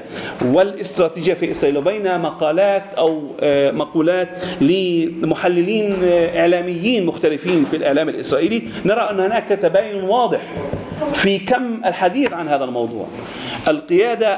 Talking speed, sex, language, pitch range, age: 105 wpm, male, English, 165-215 Hz, 40-59